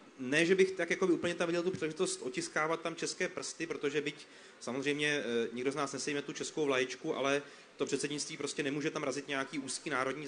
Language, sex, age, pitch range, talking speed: Czech, male, 30-49, 135-150 Hz, 205 wpm